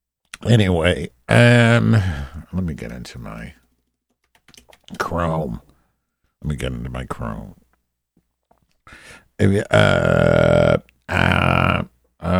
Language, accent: English, American